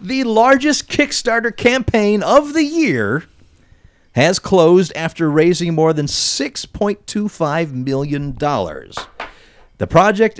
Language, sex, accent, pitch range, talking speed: English, male, American, 110-165 Hz, 100 wpm